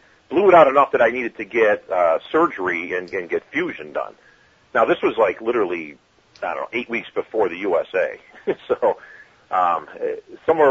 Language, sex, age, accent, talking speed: English, male, 40-59, American, 180 wpm